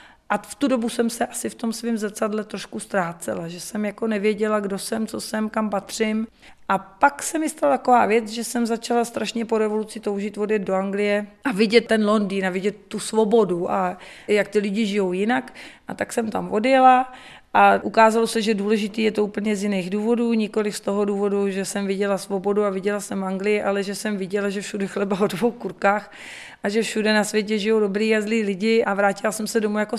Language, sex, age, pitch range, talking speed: Czech, female, 30-49, 205-235 Hz, 215 wpm